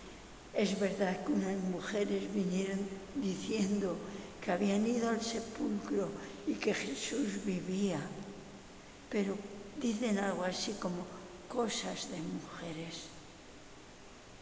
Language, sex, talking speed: English, female, 100 wpm